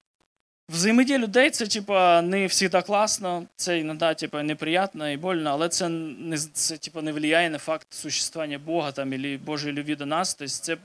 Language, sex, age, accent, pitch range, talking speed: Ukrainian, male, 20-39, native, 155-215 Hz, 175 wpm